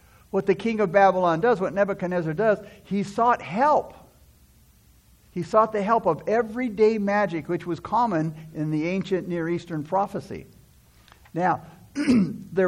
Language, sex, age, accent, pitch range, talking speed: English, male, 60-79, American, 130-200 Hz, 140 wpm